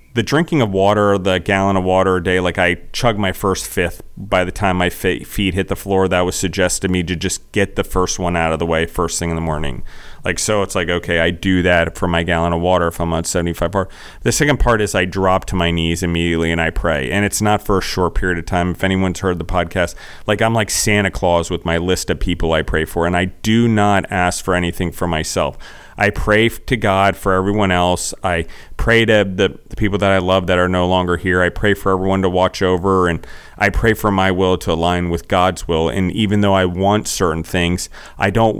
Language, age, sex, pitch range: English, 40-59, male, 85-100 Hz